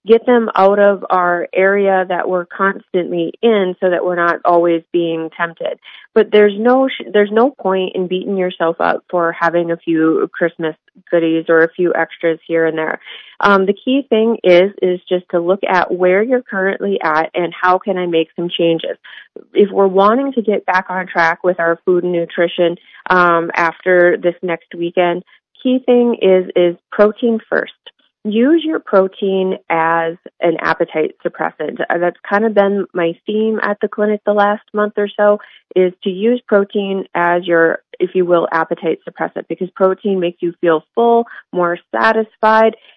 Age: 30-49